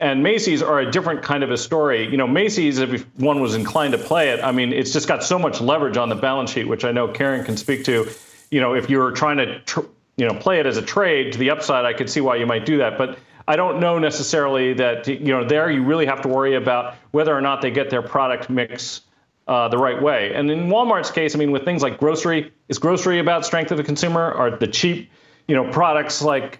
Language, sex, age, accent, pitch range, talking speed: English, male, 40-59, American, 125-155 Hz, 255 wpm